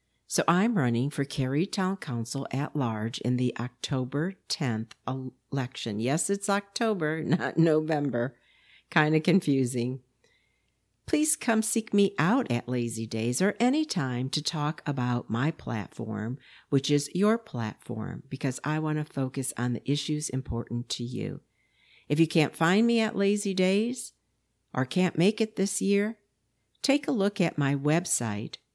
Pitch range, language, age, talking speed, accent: 125-180 Hz, English, 60-79, 150 wpm, American